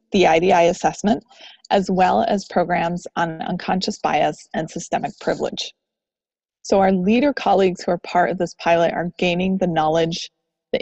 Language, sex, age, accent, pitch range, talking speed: English, female, 30-49, American, 175-215 Hz, 155 wpm